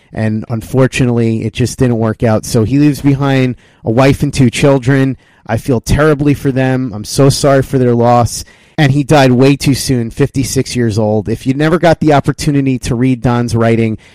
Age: 30-49